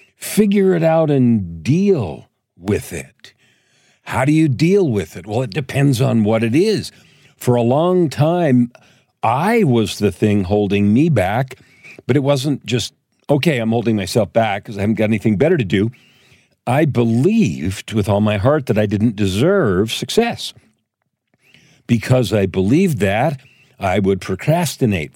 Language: English